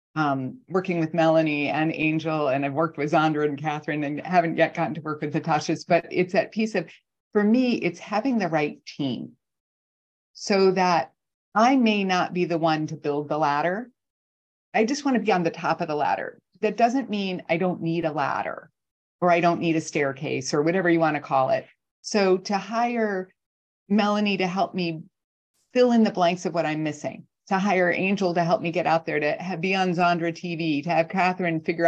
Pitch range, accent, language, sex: 155-195 Hz, American, English, female